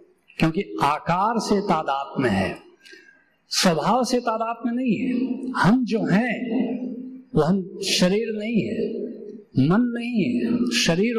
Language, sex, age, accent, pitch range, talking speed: Hindi, male, 60-79, native, 175-245 Hz, 125 wpm